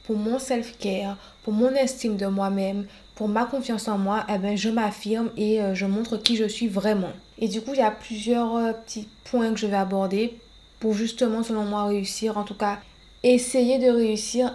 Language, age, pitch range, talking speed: French, 20-39, 205-235 Hz, 200 wpm